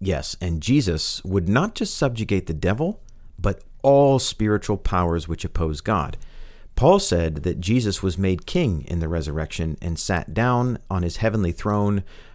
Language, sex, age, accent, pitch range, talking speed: English, male, 50-69, American, 85-115 Hz, 160 wpm